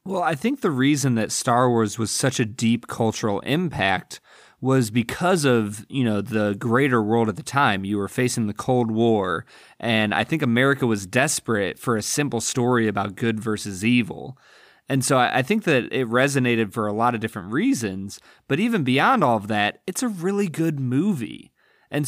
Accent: American